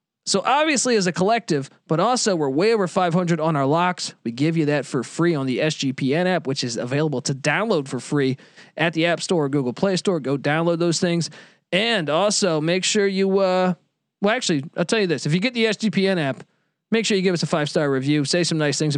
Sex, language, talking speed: male, English, 230 wpm